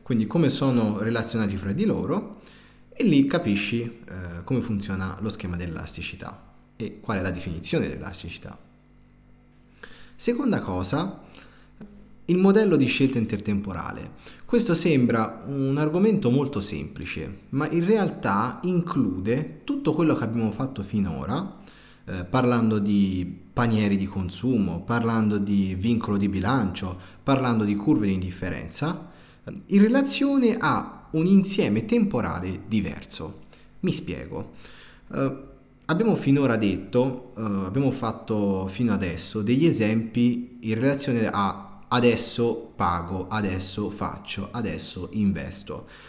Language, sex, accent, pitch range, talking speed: Italian, male, native, 95-135 Hz, 115 wpm